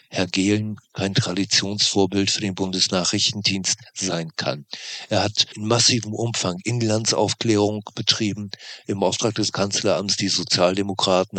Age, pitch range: 50-69, 95-105 Hz